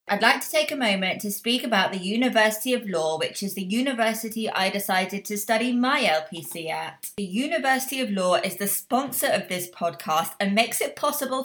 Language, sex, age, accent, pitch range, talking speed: English, female, 20-39, British, 180-240 Hz, 200 wpm